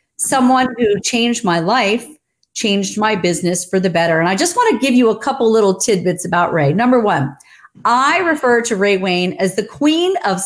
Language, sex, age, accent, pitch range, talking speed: English, female, 40-59, American, 175-230 Hz, 200 wpm